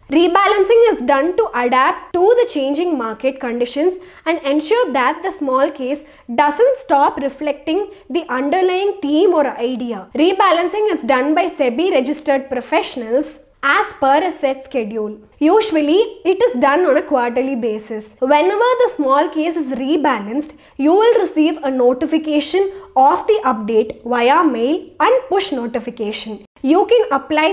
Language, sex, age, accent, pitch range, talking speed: English, female, 20-39, Indian, 260-350 Hz, 145 wpm